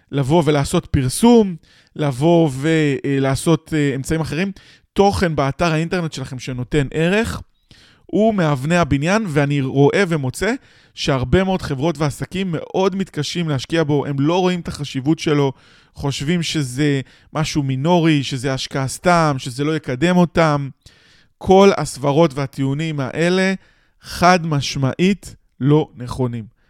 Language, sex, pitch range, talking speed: Hebrew, male, 135-170 Hz, 120 wpm